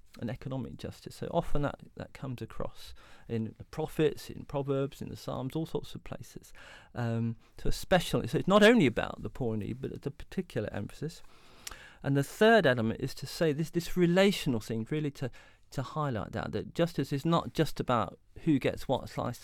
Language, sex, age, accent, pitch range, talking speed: English, male, 40-59, British, 115-150 Hz, 200 wpm